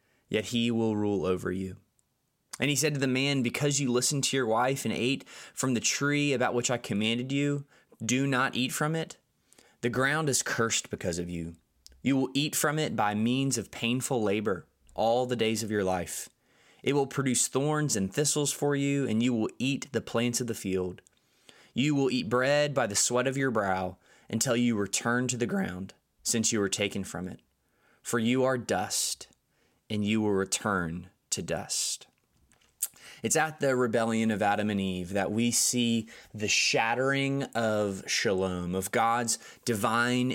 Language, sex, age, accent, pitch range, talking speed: English, male, 20-39, American, 105-135 Hz, 185 wpm